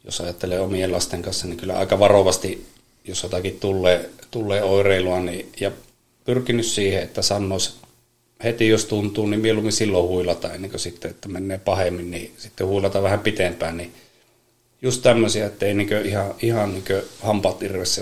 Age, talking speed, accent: 30-49, 150 wpm, native